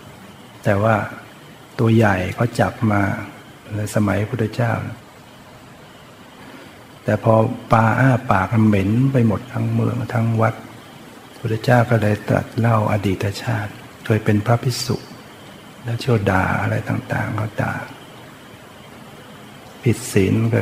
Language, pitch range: Thai, 105-120 Hz